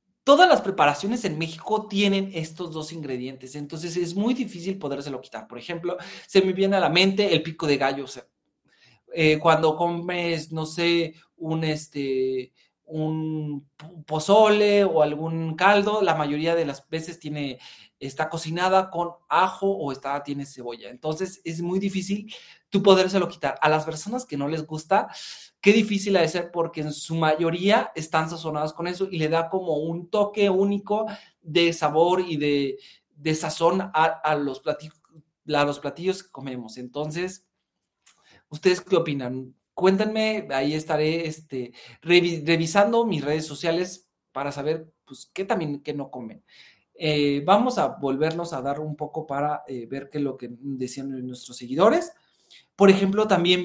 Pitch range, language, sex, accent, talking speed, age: 150-190 Hz, Spanish, male, Mexican, 155 wpm, 30-49